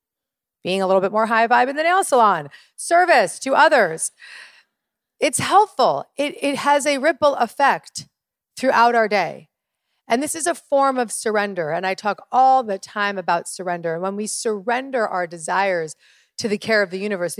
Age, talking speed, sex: 40-59, 180 wpm, female